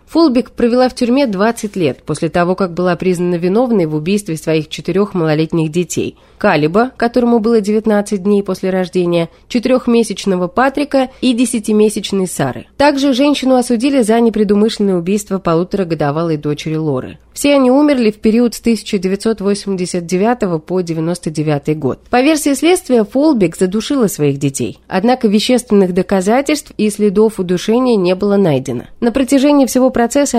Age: 30-49